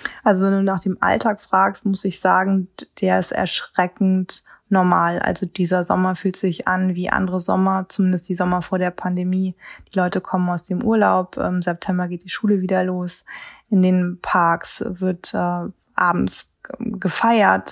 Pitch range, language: 185-205 Hz, German